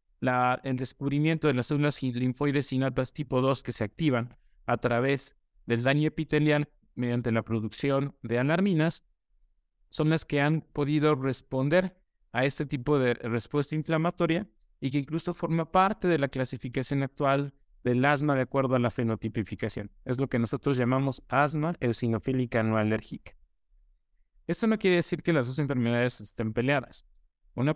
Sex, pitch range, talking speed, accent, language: male, 120-155 Hz, 155 wpm, Mexican, Spanish